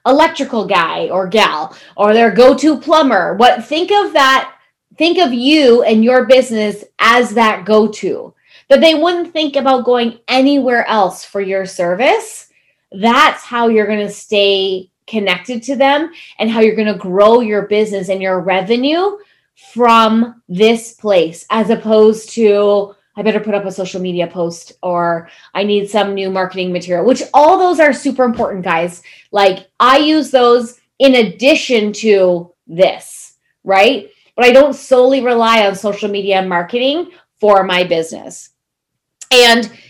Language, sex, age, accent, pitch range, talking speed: English, female, 20-39, American, 195-260 Hz, 155 wpm